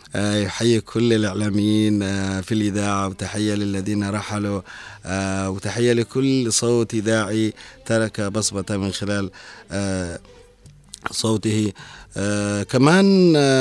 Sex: male